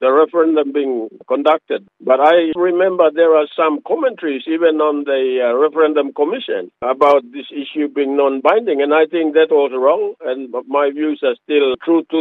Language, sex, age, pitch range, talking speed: English, male, 50-69, 145-235 Hz, 170 wpm